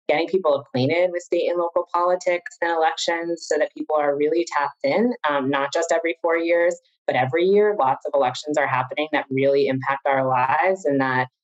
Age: 30-49